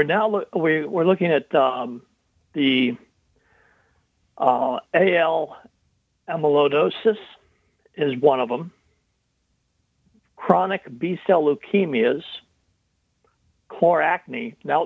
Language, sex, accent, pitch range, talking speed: English, male, American, 130-180 Hz, 75 wpm